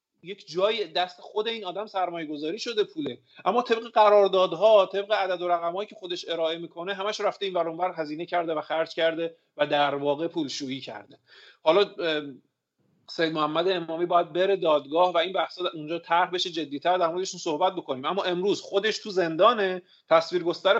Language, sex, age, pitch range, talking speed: Persian, male, 40-59, 155-200 Hz, 165 wpm